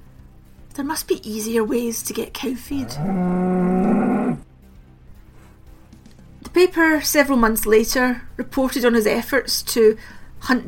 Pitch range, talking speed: 225-280 Hz, 110 wpm